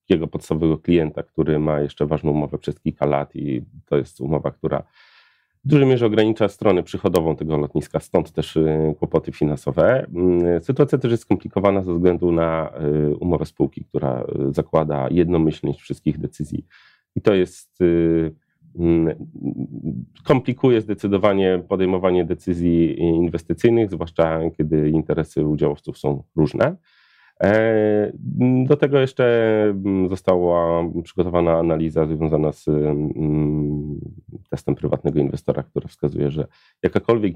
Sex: male